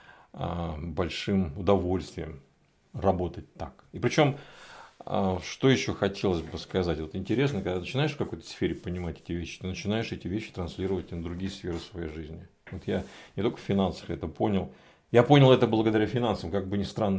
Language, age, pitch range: Russian, 40-59, 90-125 Hz